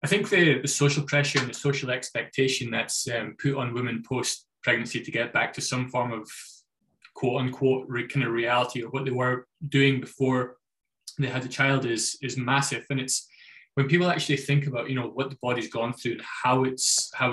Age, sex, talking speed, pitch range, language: 20-39, male, 215 wpm, 125-140 Hz, English